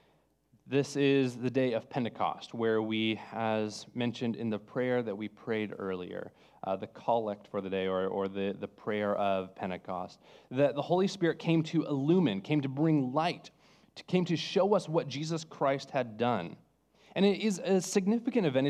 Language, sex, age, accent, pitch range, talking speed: English, male, 30-49, American, 115-160 Hz, 185 wpm